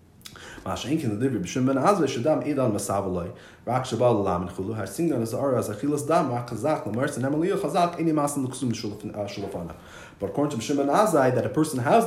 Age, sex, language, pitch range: 30-49, male, English, 110-150 Hz